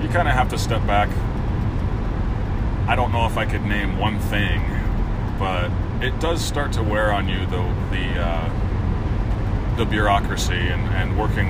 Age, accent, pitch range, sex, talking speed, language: 30-49, American, 100-110 Hz, male, 155 wpm, English